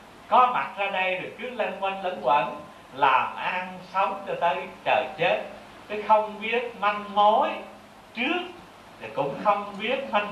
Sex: male